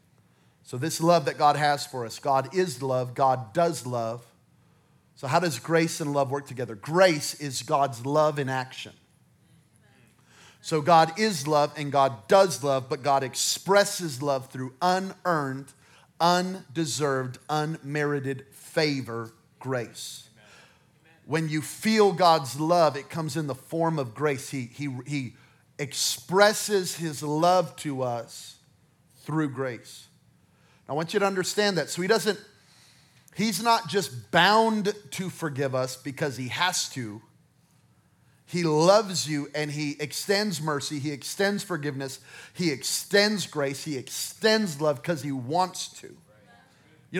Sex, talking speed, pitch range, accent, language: male, 135 wpm, 135-175 Hz, American, English